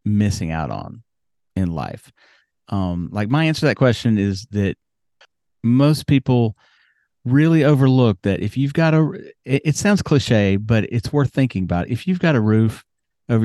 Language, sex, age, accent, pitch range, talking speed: English, male, 40-59, American, 100-130 Hz, 170 wpm